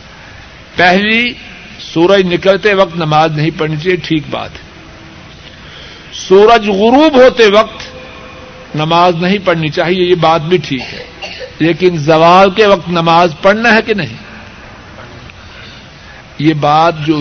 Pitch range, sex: 160-225 Hz, male